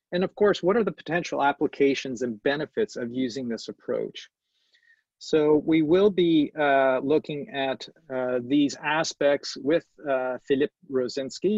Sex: male